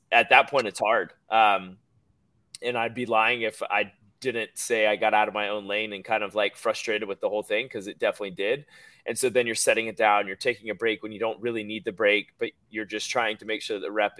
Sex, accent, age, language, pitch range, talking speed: male, American, 20-39, English, 110-125 Hz, 260 wpm